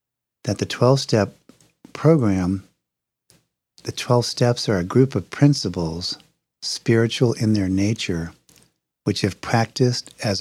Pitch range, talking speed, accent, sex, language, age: 105-135 Hz, 115 wpm, American, male, English, 50-69